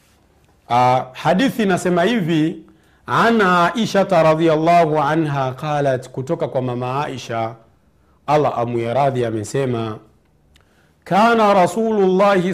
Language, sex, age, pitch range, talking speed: Swahili, male, 50-69, 120-175 Hz, 85 wpm